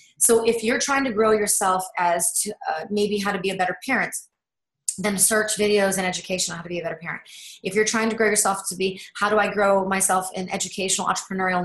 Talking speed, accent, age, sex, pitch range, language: 230 wpm, American, 30-49, female, 185-220 Hz, English